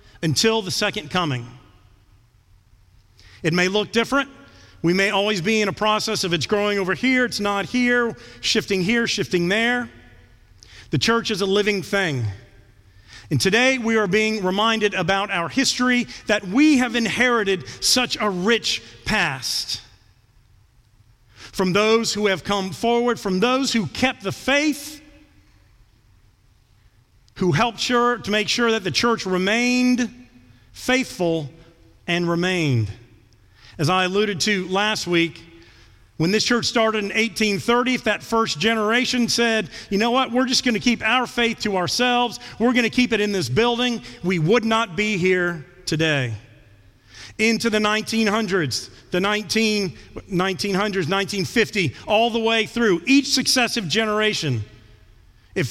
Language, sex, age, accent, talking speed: English, male, 40-59, American, 140 wpm